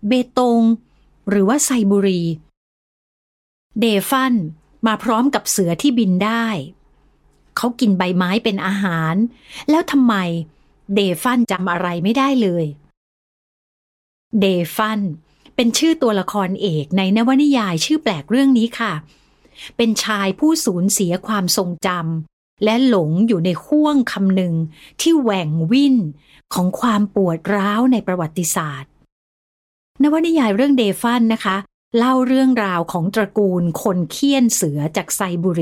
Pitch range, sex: 175-240 Hz, female